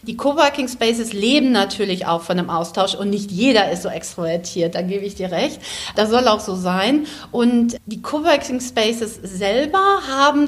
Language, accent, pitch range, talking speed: German, German, 215-275 Hz, 180 wpm